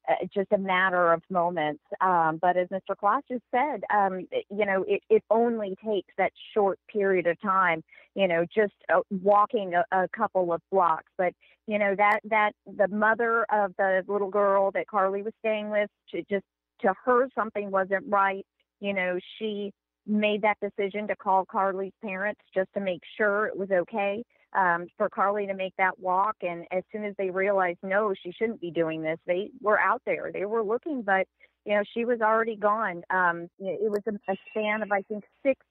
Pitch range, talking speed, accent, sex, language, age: 185-215 Hz, 200 wpm, American, female, English, 40-59